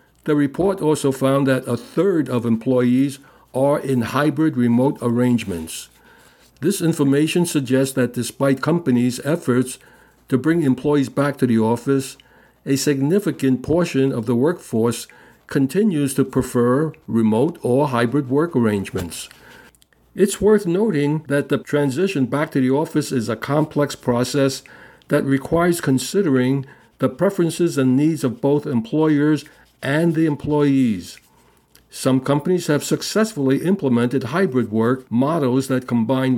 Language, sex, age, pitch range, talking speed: English, male, 60-79, 125-150 Hz, 130 wpm